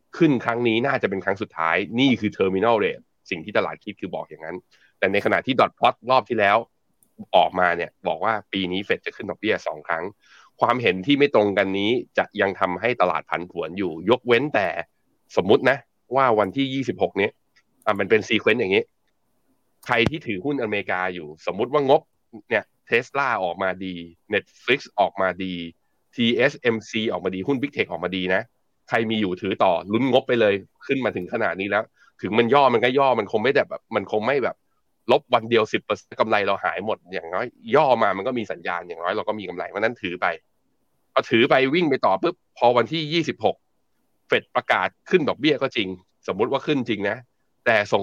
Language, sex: Thai, male